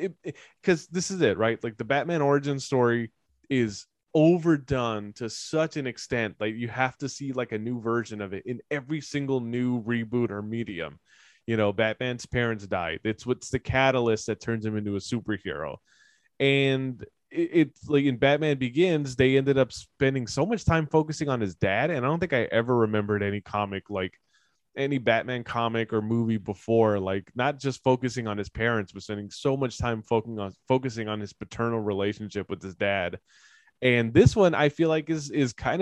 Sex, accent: male, American